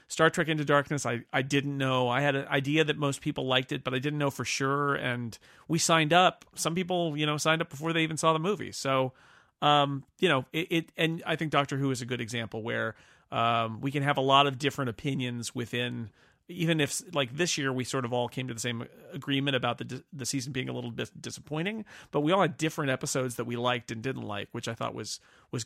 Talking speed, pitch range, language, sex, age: 245 wpm, 120-145 Hz, English, male, 40-59